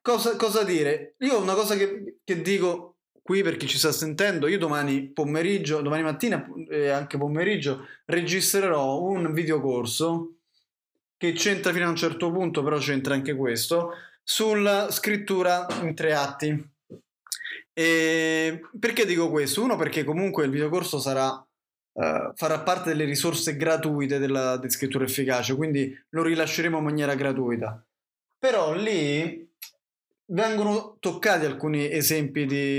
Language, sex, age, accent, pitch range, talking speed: Italian, male, 20-39, native, 140-175 Hz, 140 wpm